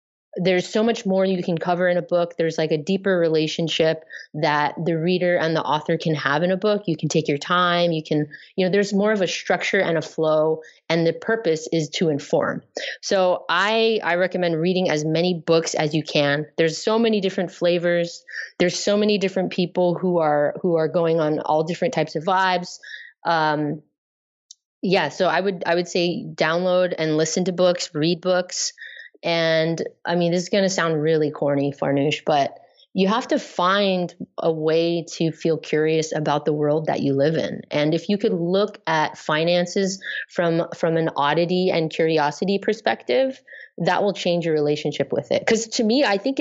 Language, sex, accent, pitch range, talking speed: English, female, American, 160-190 Hz, 195 wpm